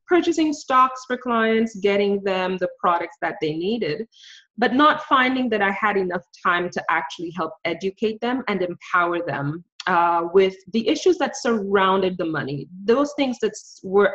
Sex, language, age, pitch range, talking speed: female, English, 20-39, 175-225 Hz, 165 wpm